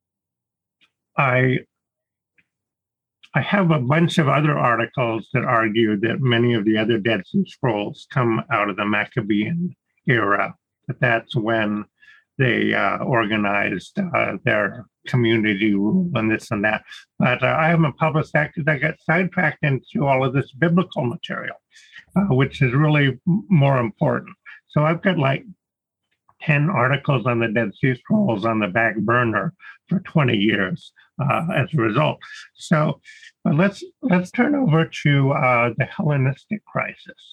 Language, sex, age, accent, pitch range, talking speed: English, male, 50-69, American, 115-165 Hz, 150 wpm